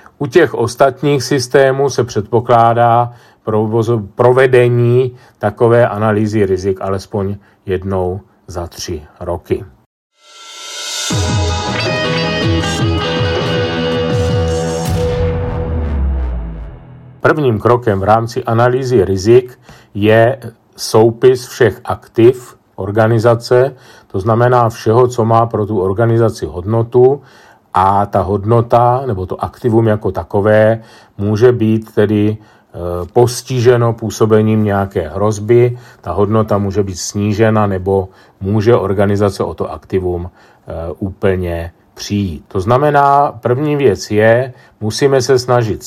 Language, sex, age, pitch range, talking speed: Czech, male, 50-69, 95-120 Hz, 95 wpm